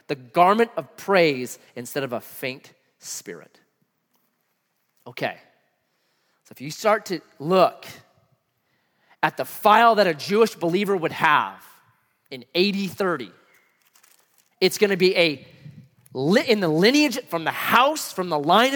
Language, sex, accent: English, male, American